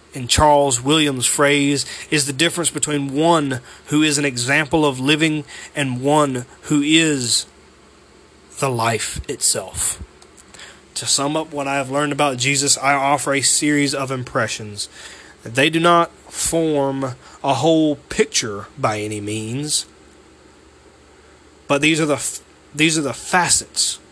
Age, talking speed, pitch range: 30-49, 135 wpm, 135-155 Hz